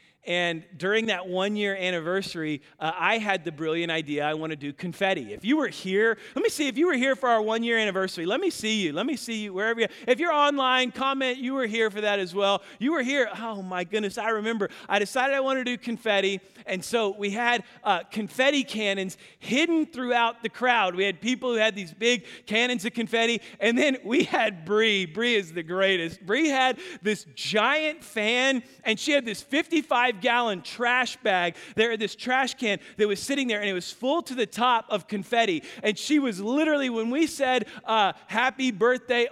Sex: male